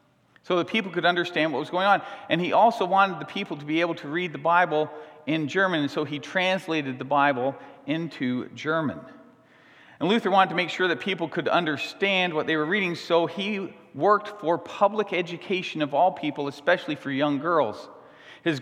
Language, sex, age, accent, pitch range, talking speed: English, male, 40-59, American, 145-185 Hz, 195 wpm